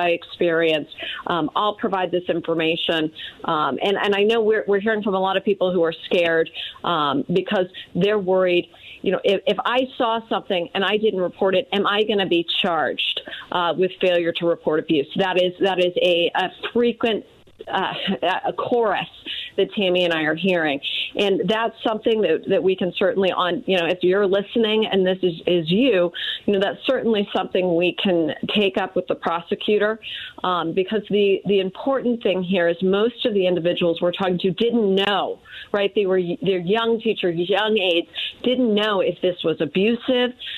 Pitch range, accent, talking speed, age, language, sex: 180-220 Hz, American, 190 wpm, 40-59, English, female